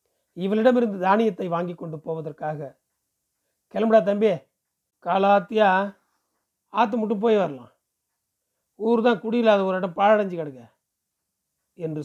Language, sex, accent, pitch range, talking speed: Tamil, male, native, 155-210 Hz, 95 wpm